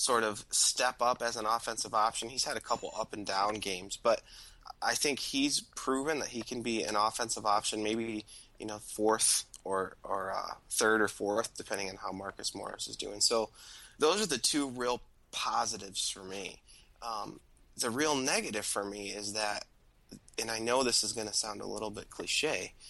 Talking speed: 190 wpm